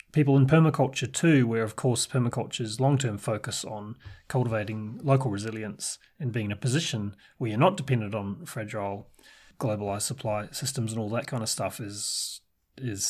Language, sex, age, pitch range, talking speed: English, male, 30-49, 115-145 Hz, 165 wpm